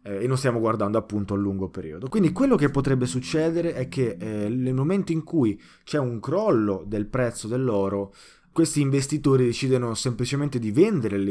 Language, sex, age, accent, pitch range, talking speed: Italian, male, 20-39, native, 105-140 Hz, 170 wpm